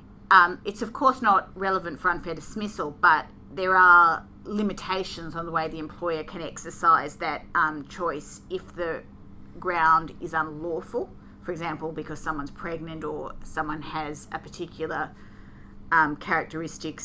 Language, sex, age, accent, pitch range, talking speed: English, female, 30-49, Australian, 160-190 Hz, 140 wpm